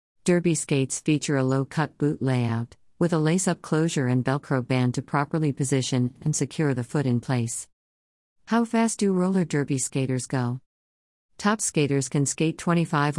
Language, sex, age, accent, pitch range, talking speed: English, female, 50-69, American, 125-155 Hz, 160 wpm